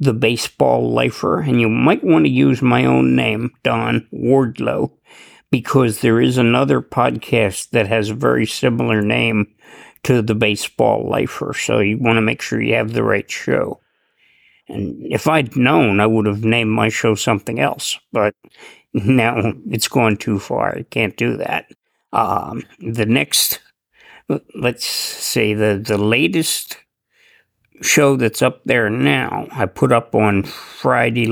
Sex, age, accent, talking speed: male, 50-69, American, 155 wpm